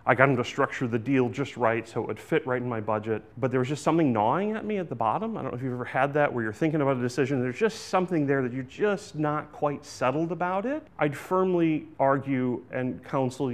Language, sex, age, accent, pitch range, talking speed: English, male, 30-49, American, 115-140 Hz, 260 wpm